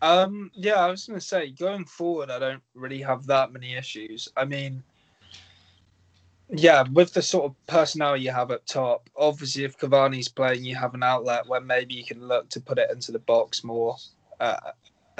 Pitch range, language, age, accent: 125-175 Hz, English, 20-39, British